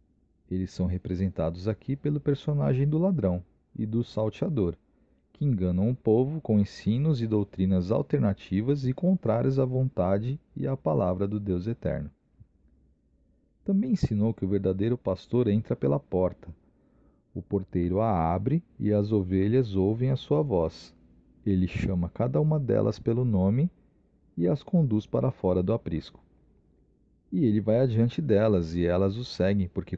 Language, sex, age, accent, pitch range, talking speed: Portuguese, male, 40-59, Brazilian, 85-120 Hz, 150 wpm